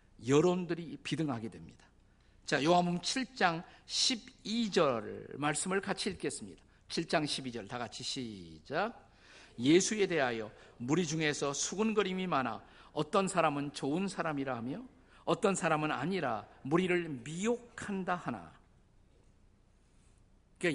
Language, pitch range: Korean, 115-175 Hz